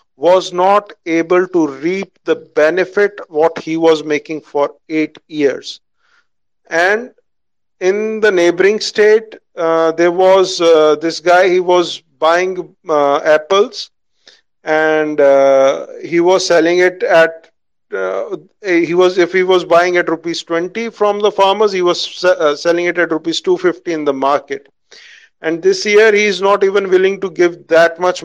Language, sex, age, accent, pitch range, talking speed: Tamil, male, 50-69, native, 160-195 Hz, 155 wpm